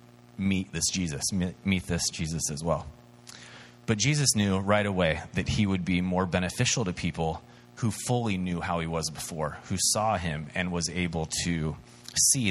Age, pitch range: 30-49, 90-120 Hz